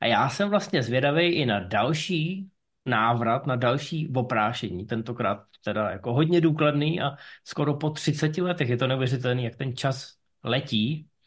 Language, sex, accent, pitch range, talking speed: Czech, male, native, 125-155 Hz, 155 wpm